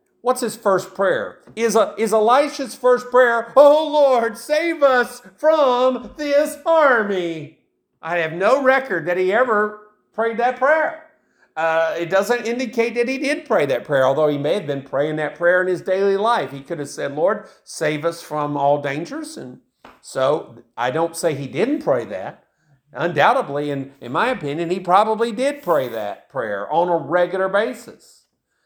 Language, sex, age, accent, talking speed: English, male, 50-69, American, 175 wpm